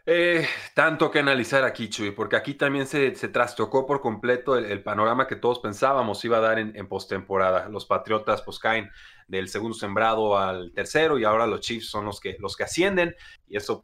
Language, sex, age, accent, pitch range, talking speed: Spanish, male, 30-49, Mexican, 105-140 Hz, 195 wpm